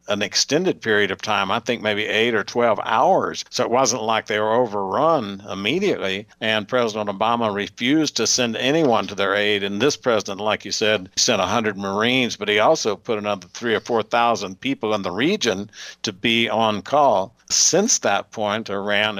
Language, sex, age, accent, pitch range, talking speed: English, male, 60-79, American, 100-115 Hz, 185 wpm